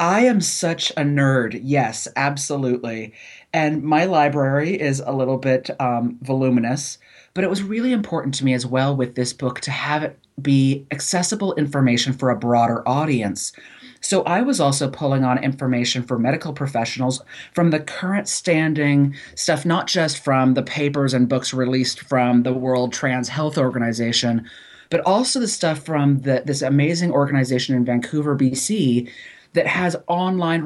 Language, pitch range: English, 130-160 Hz